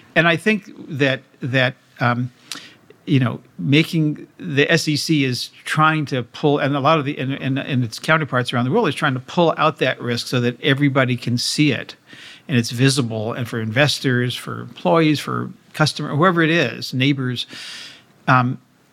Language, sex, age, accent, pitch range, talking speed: English, male, 50-69, American, 125-150 Hz, 185 wpm